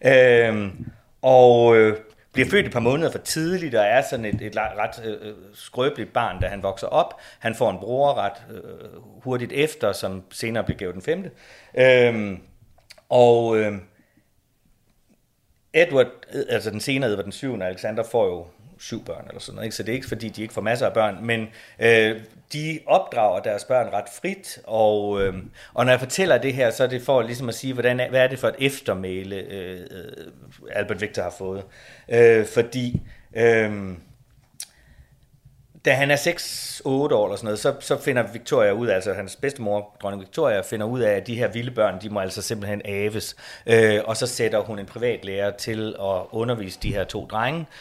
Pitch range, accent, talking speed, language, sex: 105-130 Hz, native, 190 wpm, Danish, male